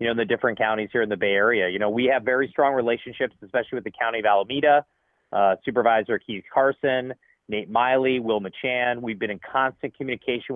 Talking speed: 205 wpm